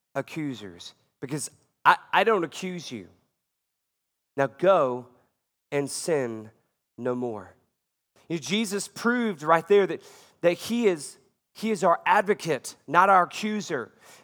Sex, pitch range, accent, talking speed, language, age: male, 155-205 Hz, American, 125 wpm, English, 30-49